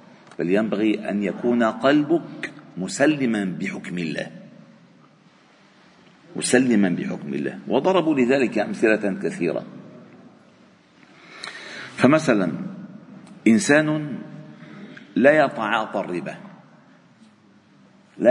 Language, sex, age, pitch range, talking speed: Arabic, male, 50-69, 125-195 Hz, 70 wpm